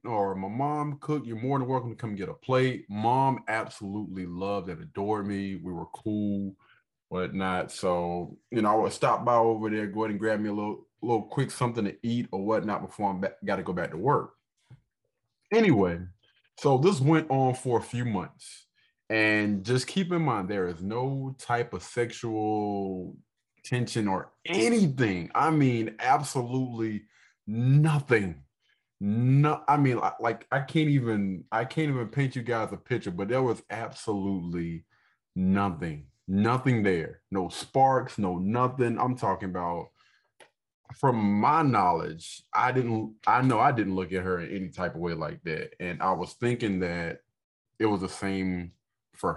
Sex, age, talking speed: male, 20-39, 170 wpm